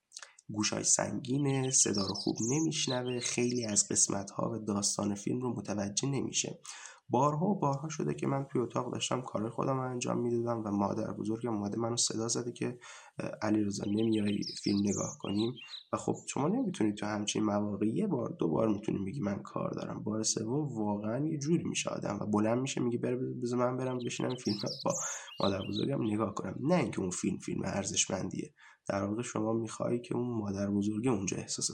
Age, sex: 20-39, male